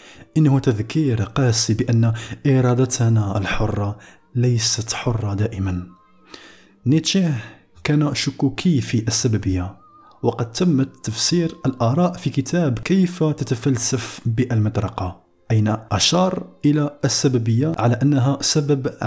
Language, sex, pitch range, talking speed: Arabic, male, 110-145 Hz, 95 wpm